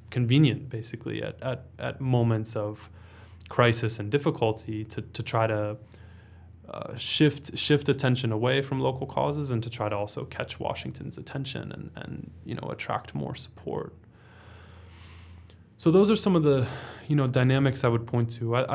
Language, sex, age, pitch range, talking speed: English, male, 20-39, 110-130 Hz, 165 wpm